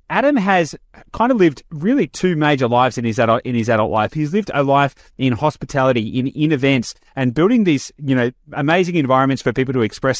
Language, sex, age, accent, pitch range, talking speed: English, male, 30-49, Australian, 120-155 Hz, 210 wpm